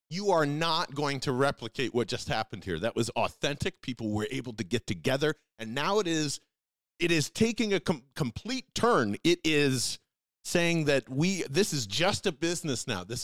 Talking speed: 190 wpm